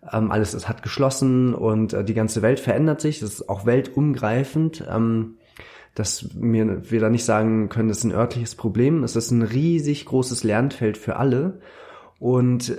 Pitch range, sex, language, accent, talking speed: 110-135 Hz, male, German, German, 175 wpm